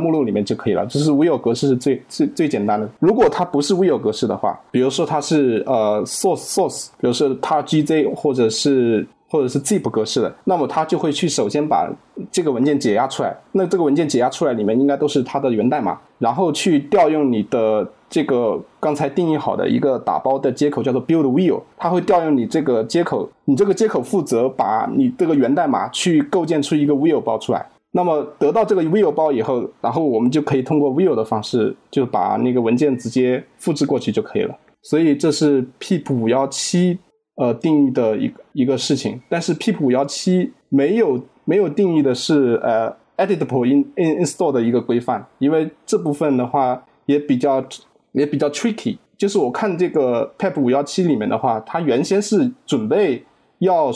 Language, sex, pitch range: Chinese, male, 130-175 Hz